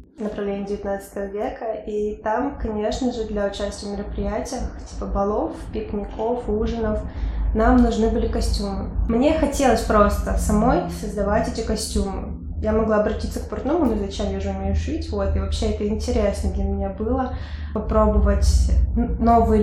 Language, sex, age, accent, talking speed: Russian, female, 20-39, native, 150 wpm